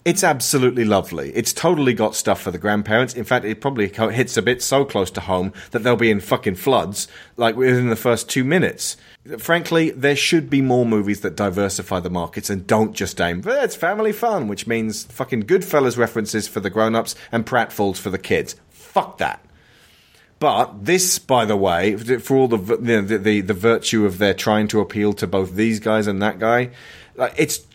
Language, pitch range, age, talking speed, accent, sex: English, 105-140 Hz, 30-49, 190 wpm, British, male